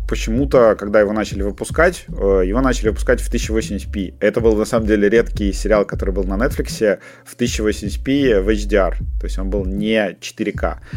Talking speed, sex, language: 170 wpm, male, Russian